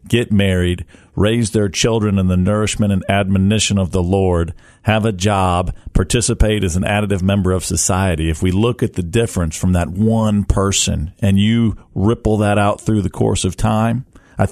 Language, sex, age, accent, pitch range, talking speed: English, male, 40-59, American, 95-115 Hz, 180 wpm